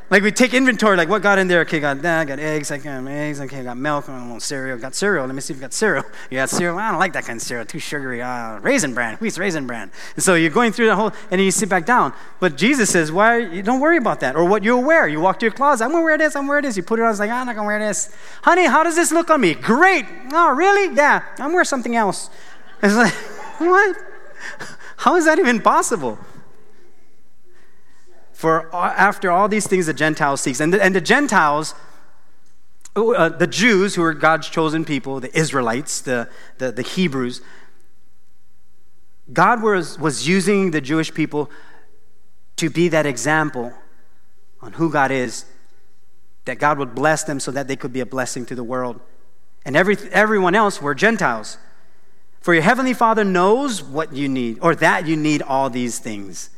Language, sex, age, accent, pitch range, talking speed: English, male, 30-49, American, 135-220 Hz, 220 wpm